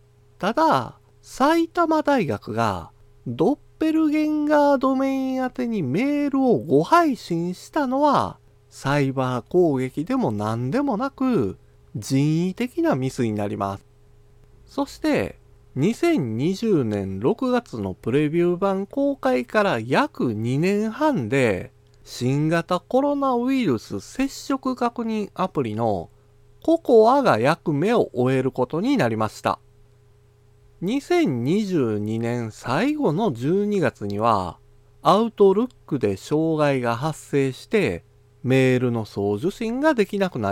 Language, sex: Japanese, male